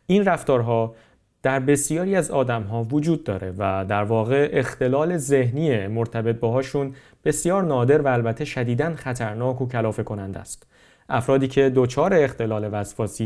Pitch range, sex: 115-140 Hz, male